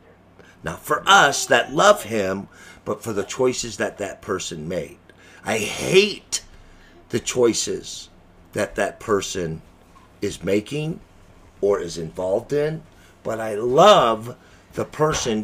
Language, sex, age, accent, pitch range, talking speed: English, male, 50-69, American, 95-130 Hz, 125 wpm